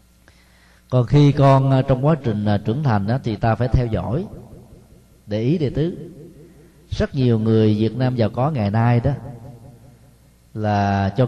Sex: male